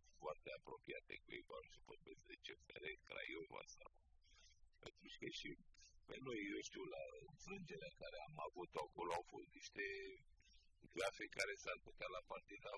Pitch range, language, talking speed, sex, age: 355-430 Hz, Romanian, 140 wpm, male, 60-79